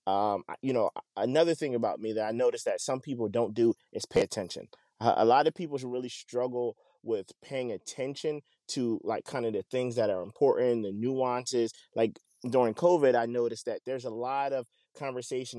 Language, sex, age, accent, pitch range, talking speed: English, male, 20-39, American, 110-125 Hz, 190 wpm